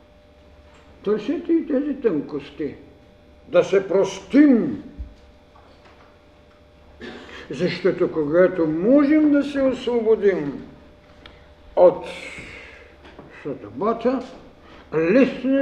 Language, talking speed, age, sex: Bulgarian, 60 wpm, 60-79, male